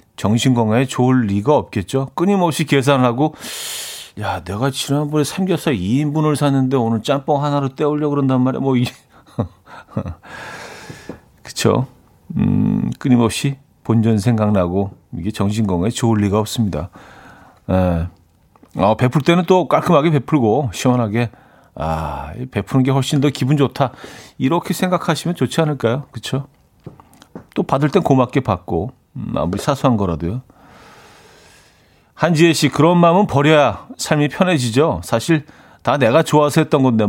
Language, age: Korean, 40-59